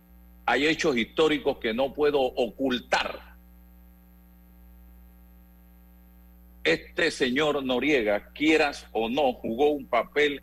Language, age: Spanish, 50-69